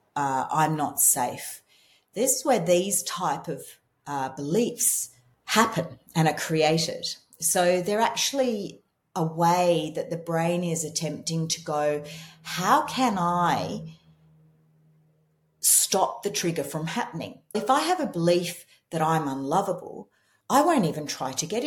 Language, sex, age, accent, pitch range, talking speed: English, female, 40-59, Australian, 150-195 Hz, 140 wpm